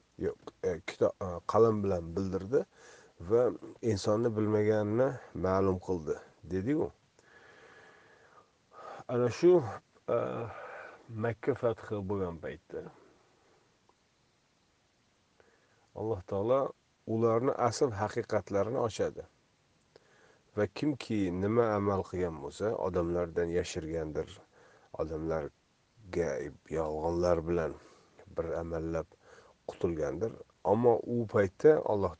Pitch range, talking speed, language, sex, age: 90-120 Hz, 60 wpm, Russian, male, 40-59